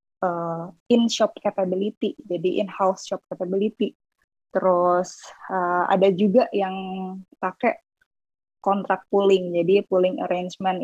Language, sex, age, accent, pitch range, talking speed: Indonesian, female, 20-39, native, 180-220 Hz, 110 wpm